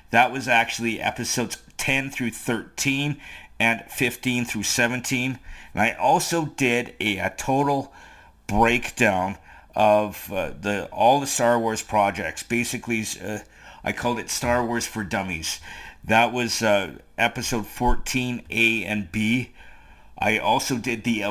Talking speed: 140 wpm